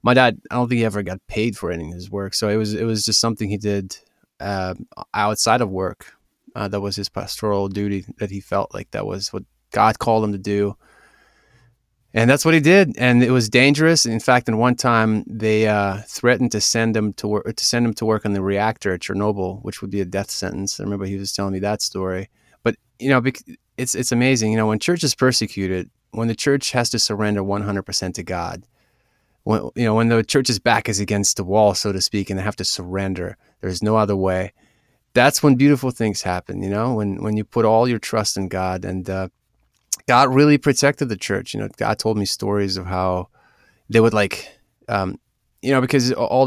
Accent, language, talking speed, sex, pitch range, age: American, English, 225 wpm, male, 100-120 Hz, 30-49